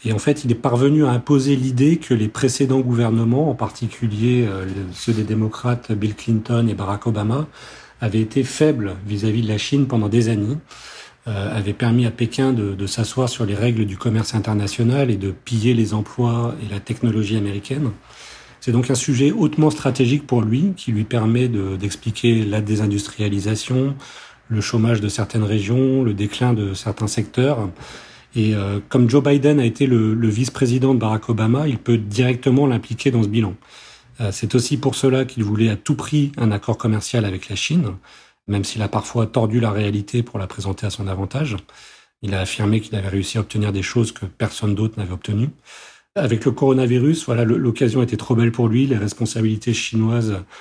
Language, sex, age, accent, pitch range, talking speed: French, male, 40-59, French, 105-125 Hz, 185 wpm